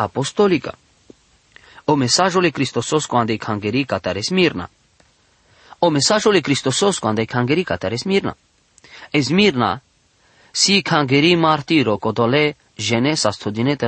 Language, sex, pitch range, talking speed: English, male, 115-165 Hz, 115 wpm